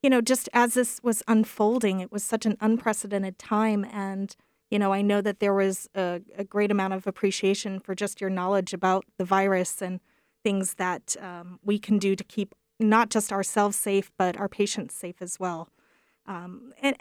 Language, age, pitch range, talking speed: English, 30-49, 195-220 Hz, 195 wpm